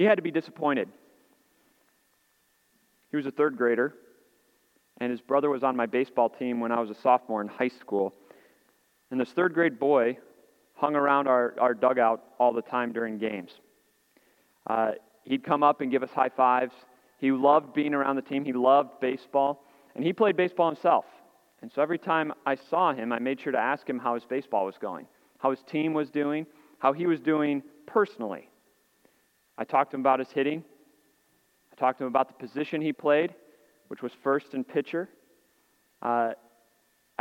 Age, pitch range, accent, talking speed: 40-59, 130-155 Hz, American, 185 wpm